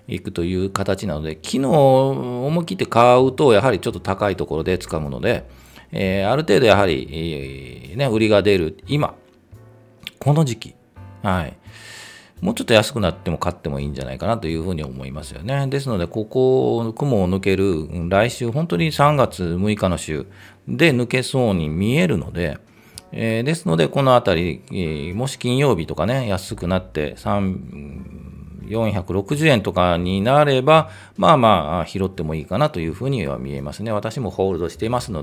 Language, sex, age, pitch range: Japanese, male, 40-59, 85-125 Hz